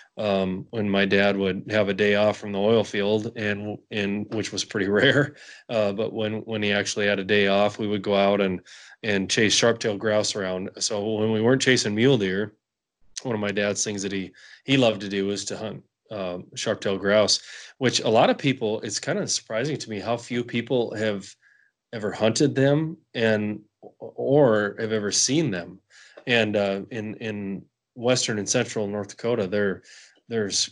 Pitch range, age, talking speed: 100-115 Hz, 20-39, 195 wpm